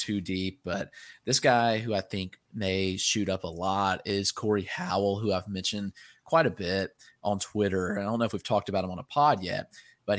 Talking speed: 225 wpm